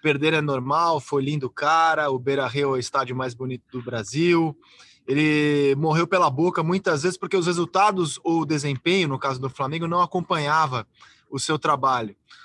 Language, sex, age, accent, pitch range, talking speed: Portuguese, male, 20-39, Brazilian, 150-195 Hz, 185 wpm